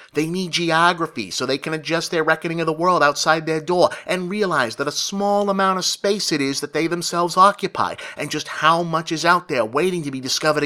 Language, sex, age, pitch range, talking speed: English, male, 30-49, 145-180 Hz, 225 wpm